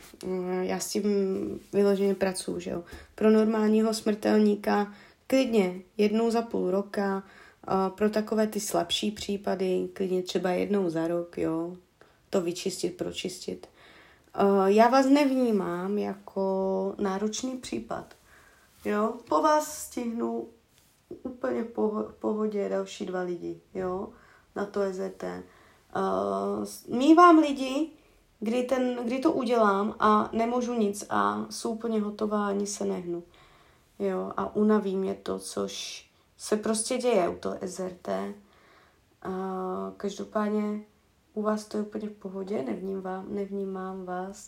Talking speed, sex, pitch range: 125 wpm, female, 185-220 Hz